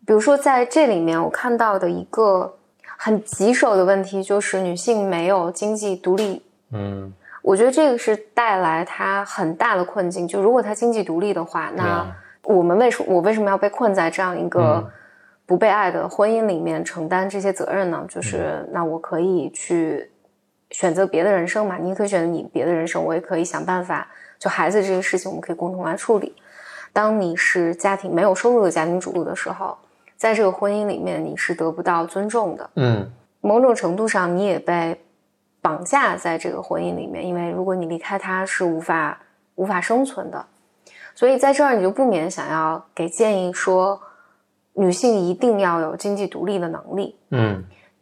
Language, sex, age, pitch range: Chinese, female, 20-39, 175-215 Hz